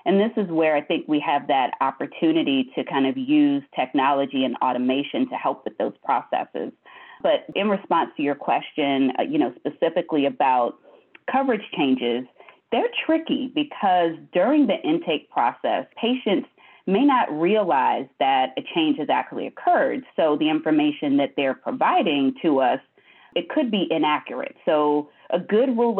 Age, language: 30-49, English